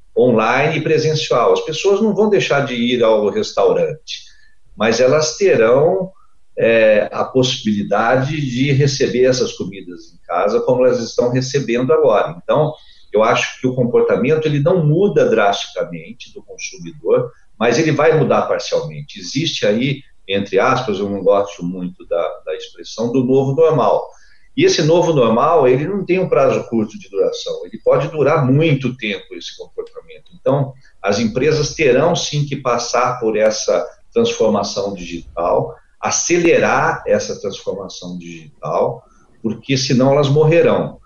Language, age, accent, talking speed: Portuguese, 50-69, Brazilian, 145 wpm